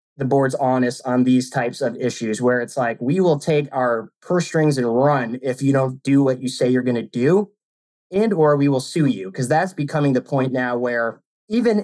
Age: 20-39